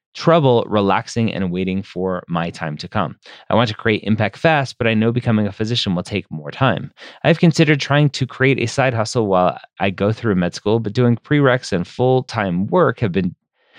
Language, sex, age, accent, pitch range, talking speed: English, male, 30-49, American, 95-135 Hz, 205 wpm